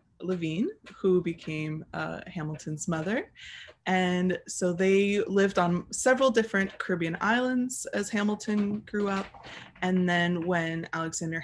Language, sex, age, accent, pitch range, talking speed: English, female, 20-39, American, 170-195 Hz, 120 wpm